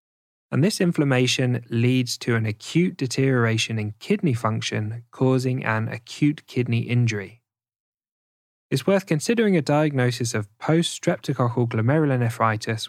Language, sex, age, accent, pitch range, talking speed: English, male, 10-29, British, 115-135 Hz, 110 wpm